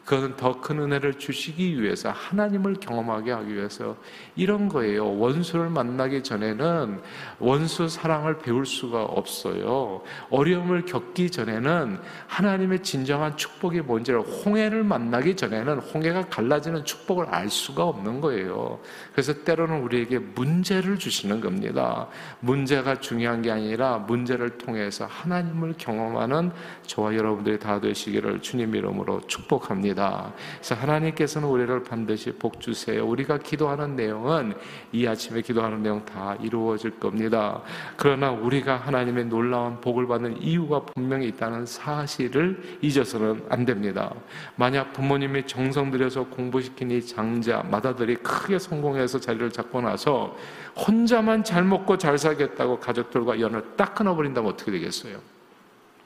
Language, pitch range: Korean, 120-165 Hz